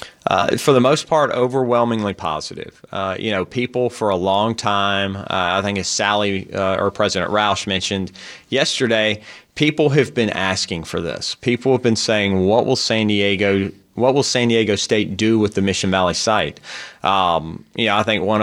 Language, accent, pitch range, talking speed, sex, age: English, American, 100-115 Hz, 185 wpm, male, 30-49